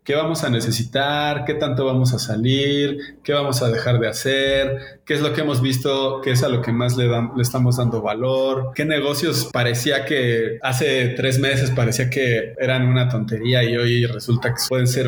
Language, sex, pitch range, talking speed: Spanish, male, 120-145 Hz, 205 wpm